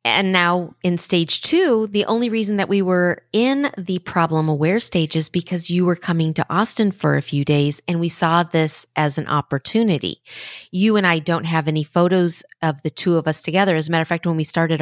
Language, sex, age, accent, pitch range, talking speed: English, female, 30-49, American, 165-210 Hz, 225 wpm